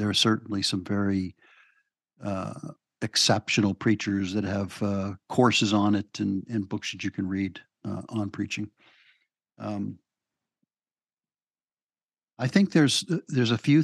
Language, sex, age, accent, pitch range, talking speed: English, male, 50-69, American, 100-115 Hz, 135 wpm